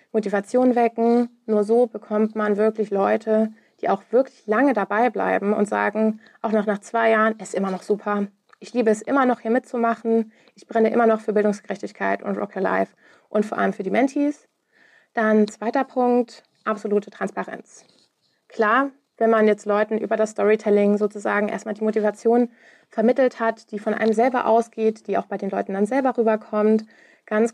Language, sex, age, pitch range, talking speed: German, female, 20-39, 205-230 Hz, 175 wpm